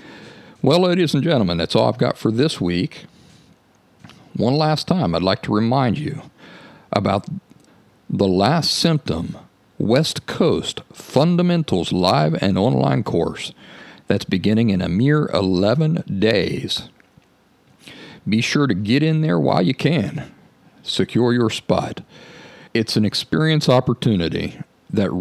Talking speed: 130 wpm